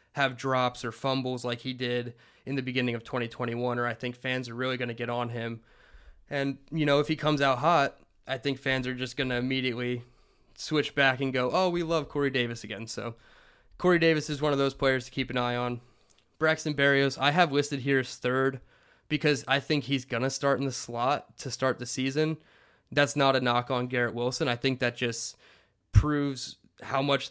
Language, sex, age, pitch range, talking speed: English, male, 20-39, 120-140 Hz, 215 wpm